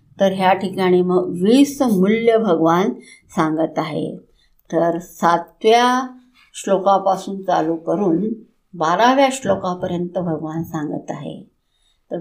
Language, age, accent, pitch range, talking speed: Hindi, 60-79, native, 175-235 Hz, 105 wpm